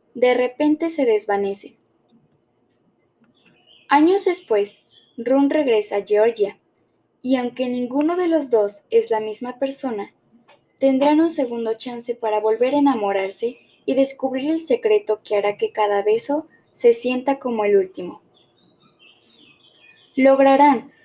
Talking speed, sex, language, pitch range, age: 125 wpm, female, Spanish, 210-275 Hz, 10-29